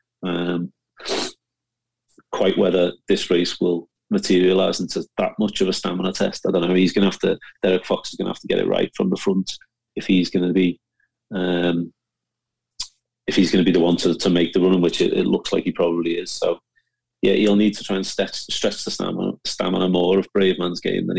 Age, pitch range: 30-49, 90-95 Hz